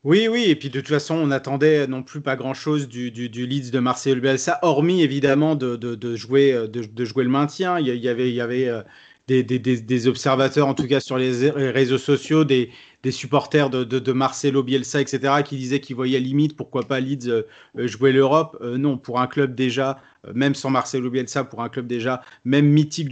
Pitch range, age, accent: 125-140 Hz, 30-49, French